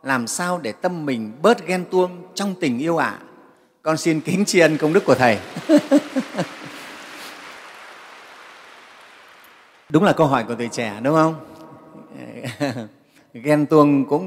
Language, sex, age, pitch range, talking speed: Vietnamese, male, 30-49, 135-190 Hz, 140 wpm